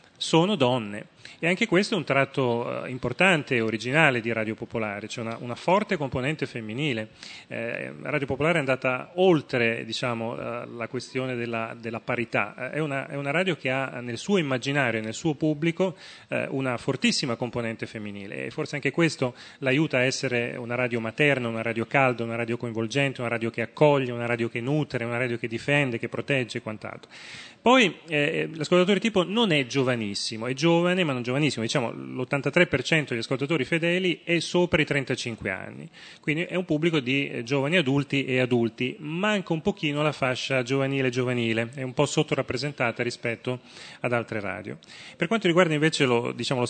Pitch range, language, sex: 120-150 Hz, Italian, male